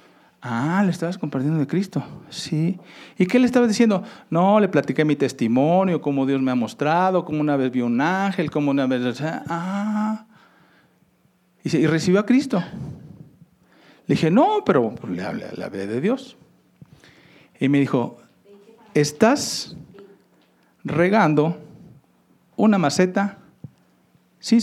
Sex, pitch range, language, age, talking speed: male, 140-200 Hz, Spanish, 50-69, 130 wpm